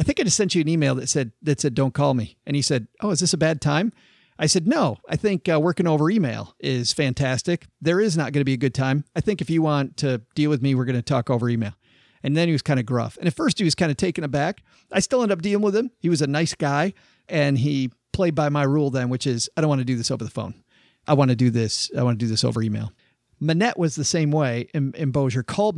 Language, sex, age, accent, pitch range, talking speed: English, male, 40-59, American, 135-175 Hz, 290 wpm